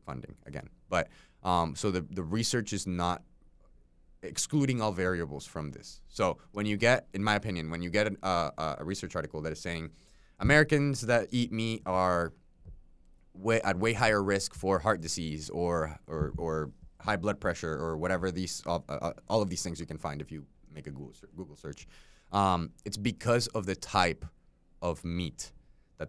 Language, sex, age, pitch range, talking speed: English, male, 20-39, 75-100 Hz, 185 wpm